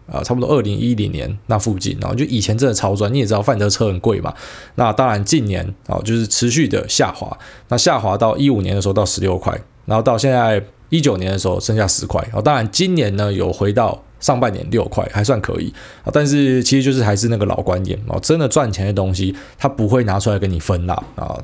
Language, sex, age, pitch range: Chinese, male, 20-39, 100-130 Hz